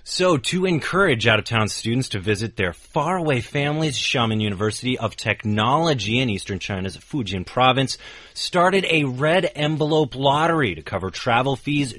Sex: male